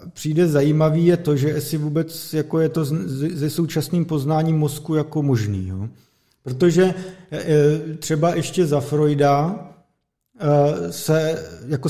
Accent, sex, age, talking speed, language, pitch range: native, male, 40-59, 130 wpm, Czech, 135-155 Hz